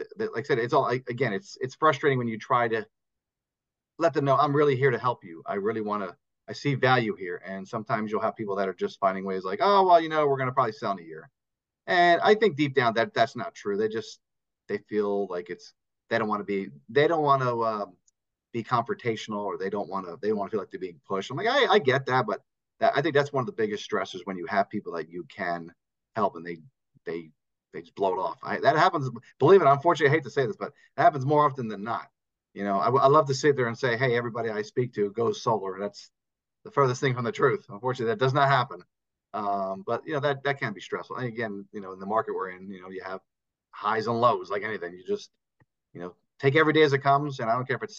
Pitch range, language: 100-145 Hz, English